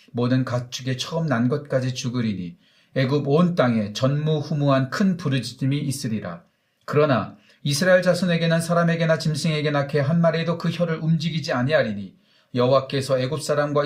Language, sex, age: Korean, male, 40-59